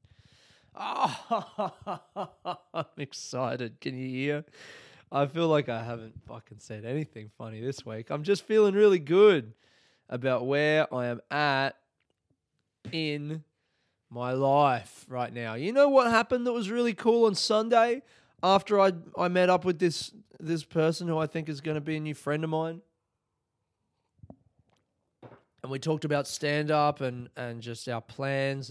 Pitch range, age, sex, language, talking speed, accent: 120-155 Hz, 20-39, male, English, 155 wpm, Australian